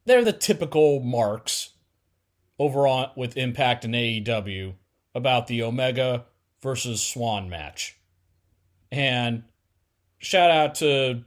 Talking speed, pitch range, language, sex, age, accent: 105 wpm, 100-150 Hz, English, male, 30-49, American